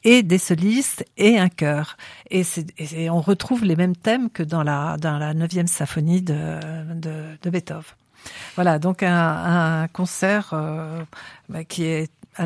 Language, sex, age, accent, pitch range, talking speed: French, female, 50-69, French, 160-190 Hz, 175 wpm